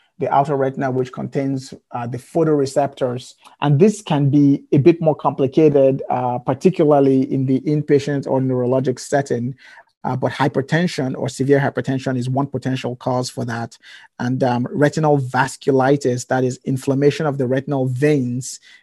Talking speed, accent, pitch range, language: 150 wpm, Nigerian, 125-140 Hz, English